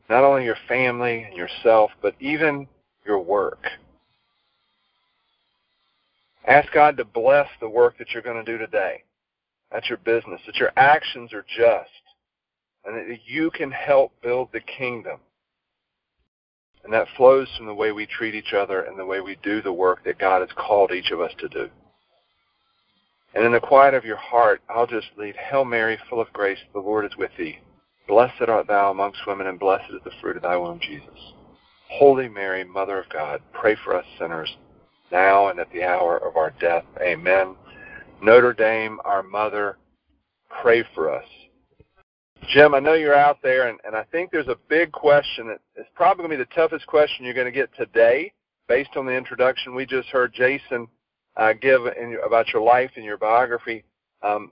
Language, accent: English, American